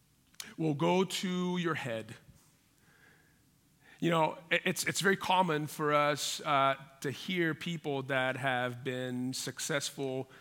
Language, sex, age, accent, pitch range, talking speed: English, male, 40-59, American, 145-195 Hz, 120 wpm